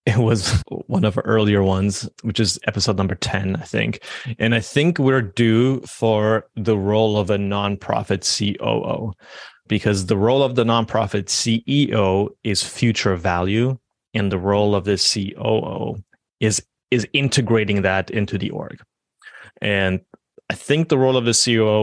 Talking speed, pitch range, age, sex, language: 155 wpm, 100-120 Hz, 30-49, male, English